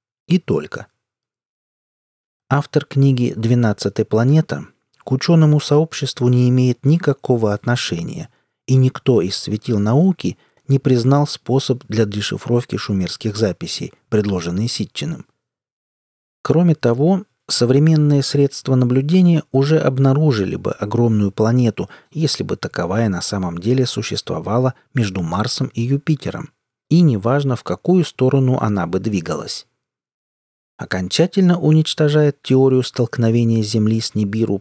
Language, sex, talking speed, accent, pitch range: Russian, male, 110 wpm, native, 105-145 Hz